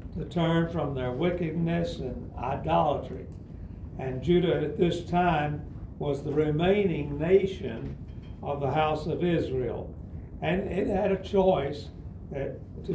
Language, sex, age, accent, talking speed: English, male, 60-79, American, 125 wpm